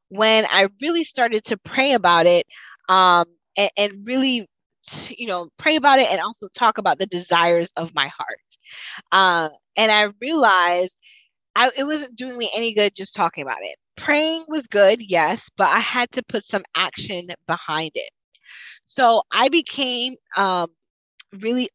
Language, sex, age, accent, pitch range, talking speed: English, female, 20-39, American, 170-230 Hz, 165 wpm